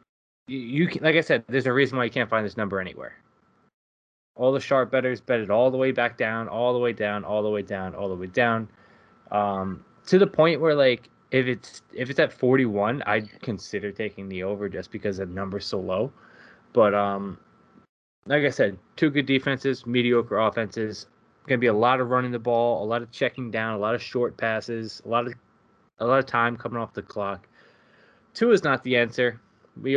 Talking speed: 210 wpm